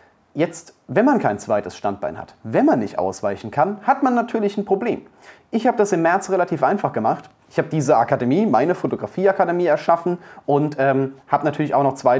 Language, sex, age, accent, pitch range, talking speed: German, male, 30-49, German, 120-160 Hz, 190 wpm